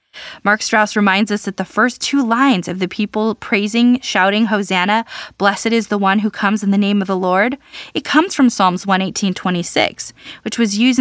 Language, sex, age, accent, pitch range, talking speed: English, female, 20-39, American, 190-245 Hz, 190 wpm